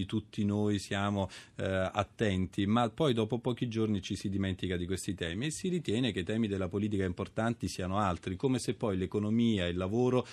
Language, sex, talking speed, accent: Italian, male, 200 wpm, native